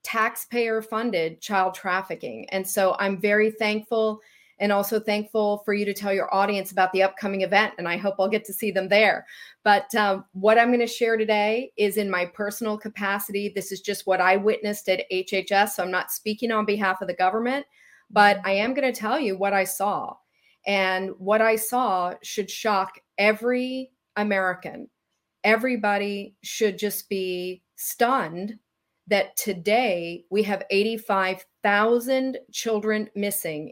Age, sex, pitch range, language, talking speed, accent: 30-49, female, 190-220 Hz, English, 160 wpm, American